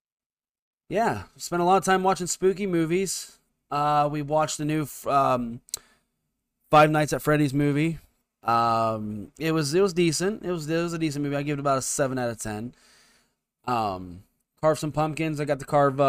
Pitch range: 125-155 Hz